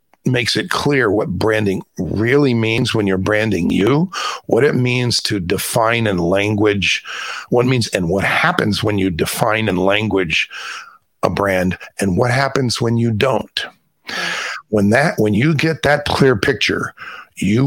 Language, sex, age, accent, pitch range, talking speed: English, male, 50-69, American, 100-135 Hz, 155 wpm